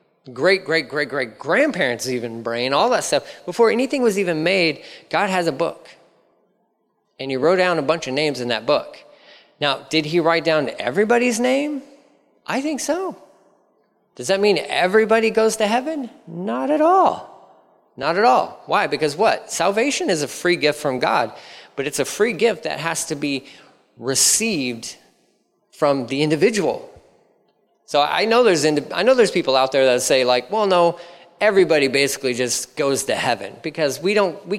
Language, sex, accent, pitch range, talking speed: English, male, American, 140-220 Hz, 175 wpm